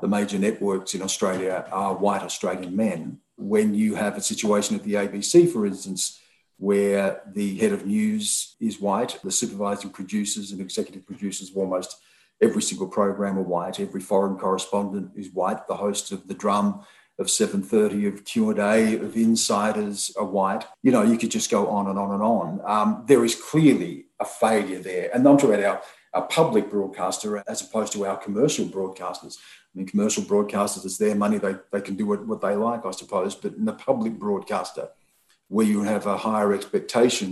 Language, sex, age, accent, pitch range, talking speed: English, male, 40-59, Australian, 95-125 Hz, 190 wpm